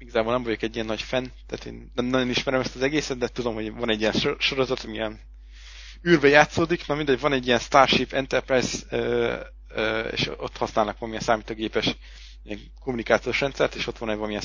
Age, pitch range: 20-39, 105-125 Hz